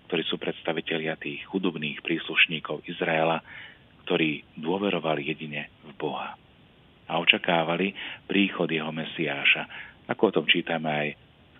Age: 40-59